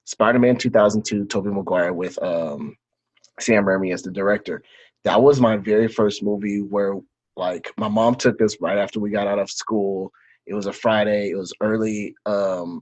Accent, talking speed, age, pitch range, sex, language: American, 180 wpm, 30-49, 100-120 Hz, male, English